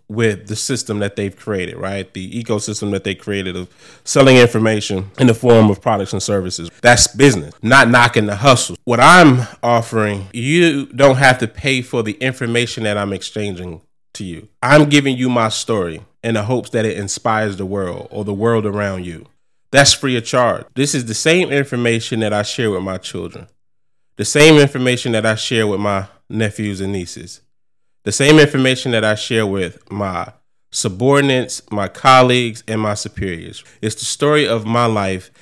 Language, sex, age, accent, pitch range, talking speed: English, male, 20-39, American, 100-125 Hz, 185 wpm